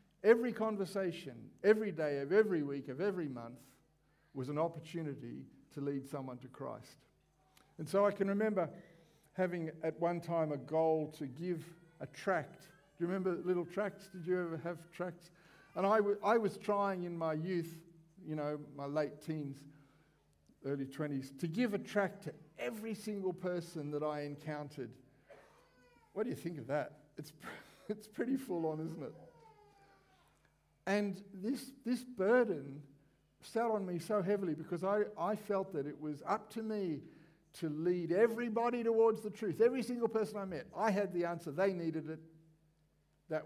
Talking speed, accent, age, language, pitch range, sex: 165 wpm, Australian, 50-69, English, 150-195 Hz, male